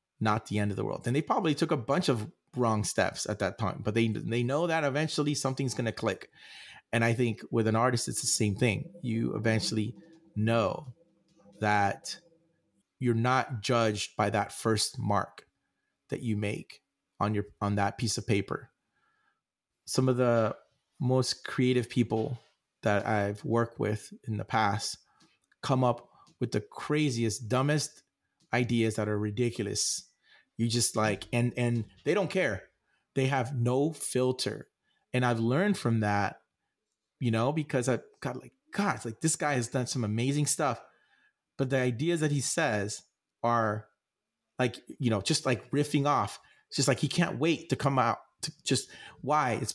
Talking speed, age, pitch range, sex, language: 170 wpm, 30-49, 110-135 Hz, male, English